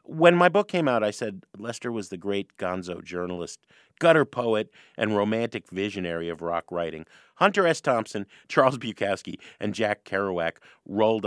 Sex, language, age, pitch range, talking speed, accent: male, English, 40-59, 90-135 Hz, 160 wpm, American